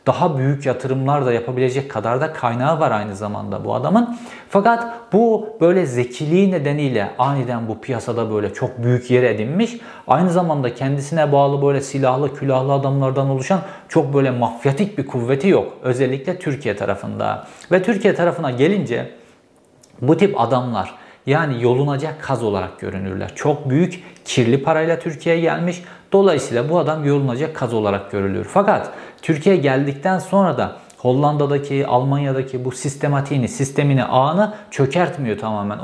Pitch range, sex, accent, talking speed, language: 125-170 Hz, male, native, 135 wpm, Turkish